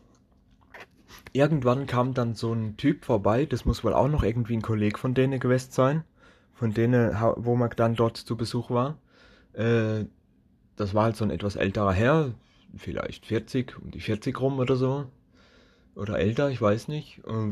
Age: 20-39